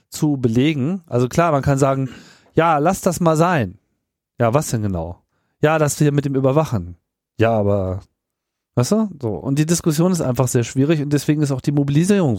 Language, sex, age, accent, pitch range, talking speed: German, male, 40-59, German, 120-150 Hz, 195 wpm